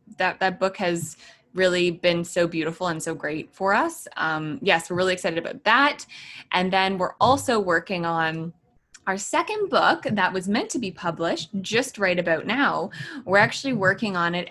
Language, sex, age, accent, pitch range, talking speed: English, female, 20-39, American, 170-205 Hz, 180 wpm